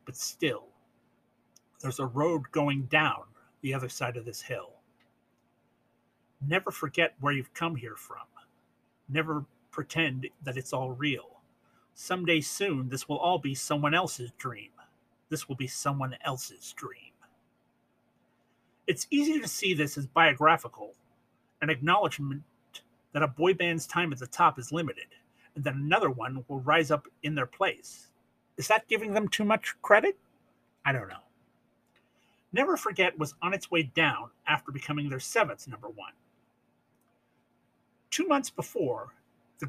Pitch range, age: 135-170 Hz, 40-59